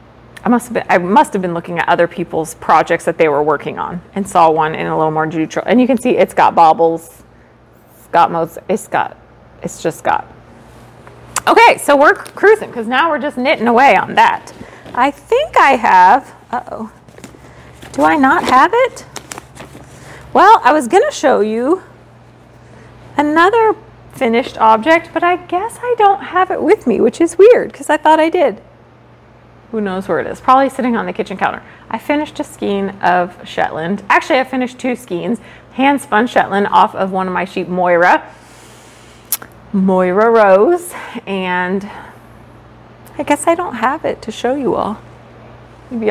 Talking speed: 175 wpm